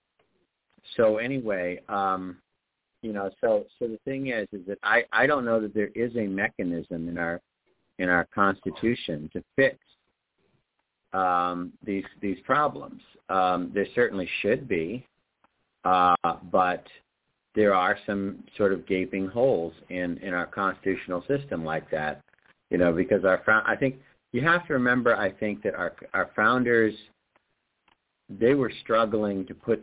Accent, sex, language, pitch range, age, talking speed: American, male, English, 90-115 Hz, 50-69, 150 wpm